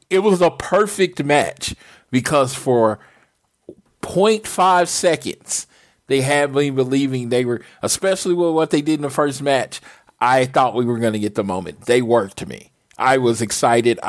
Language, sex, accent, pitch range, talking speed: English, male, American, 115-150 Hz, 165 wpm